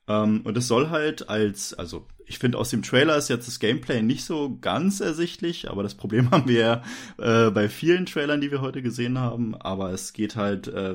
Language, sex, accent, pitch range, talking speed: German, male, German, 105-130 Hz, 215 wpm